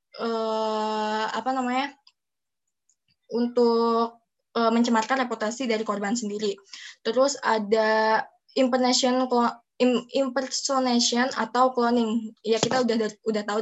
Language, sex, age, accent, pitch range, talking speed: Indonesian, female, 10-29, native, 220-255 Hz, 90 wpm